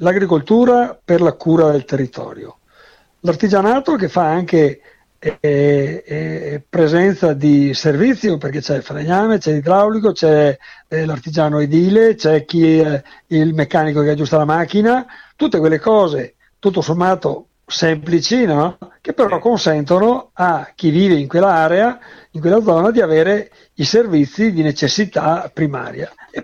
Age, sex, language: 60-79, male, Italian